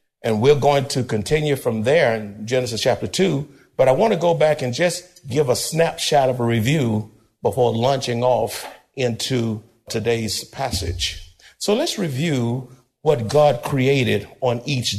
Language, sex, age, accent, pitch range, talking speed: English, male, 50-69, American, 110-135 Hz, 155 wpm